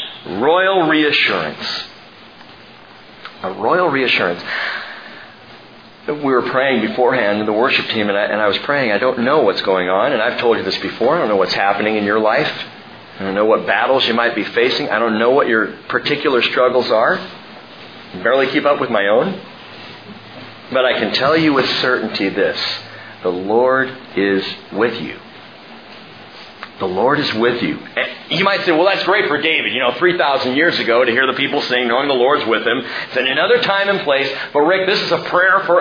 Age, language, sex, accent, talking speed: 40-59, English, male, American, 195 wpm